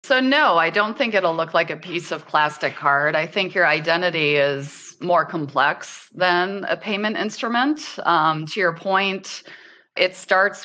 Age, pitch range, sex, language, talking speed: 30-49, 145-180 Hz, female, English, 170 wpm